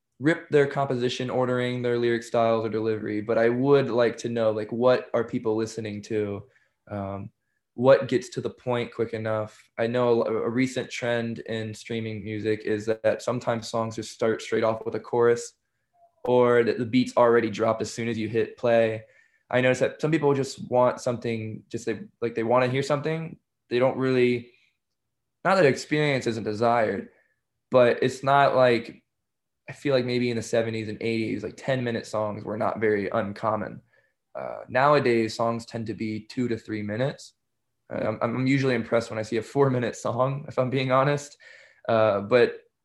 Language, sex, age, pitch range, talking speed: English, male, 20-39, 110-125 Hz, 190 wpm